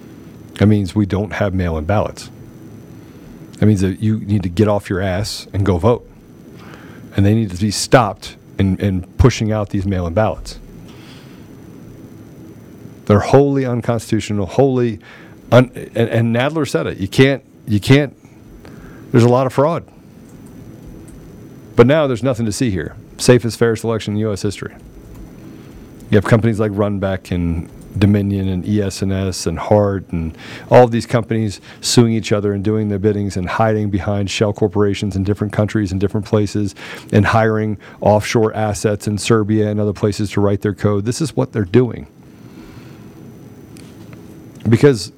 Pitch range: 100-115 Hz